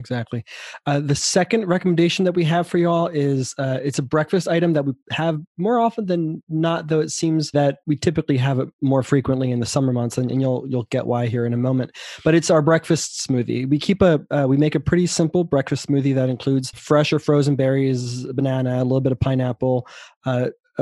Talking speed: 220 wpm